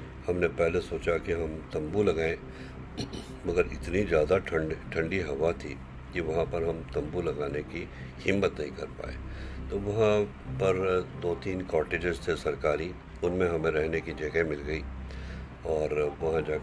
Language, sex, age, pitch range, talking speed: Hindi, male, 50-69, 65-90 Hz, 150 wpm